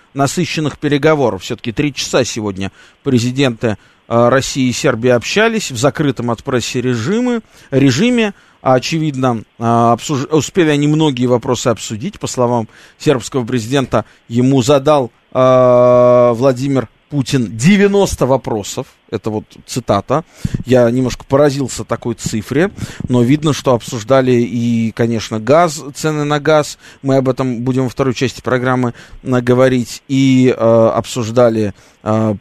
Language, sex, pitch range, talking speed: Russian, male, 115-145 Hz, 115 wpm